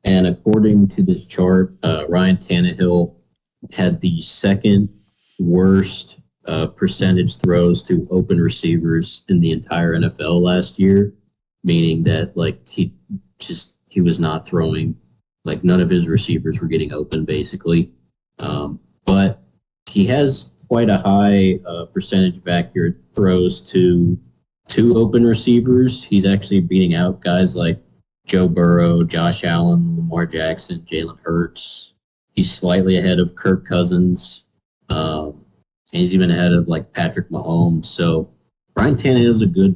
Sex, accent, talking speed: male, American, 140 wpm